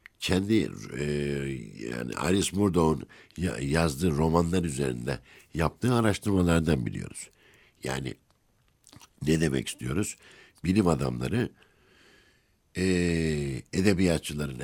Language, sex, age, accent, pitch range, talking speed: Turkish, male, 60-79, native, 70-90 Hz, 80 wpm